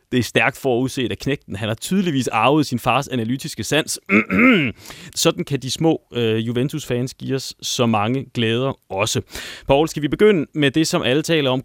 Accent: native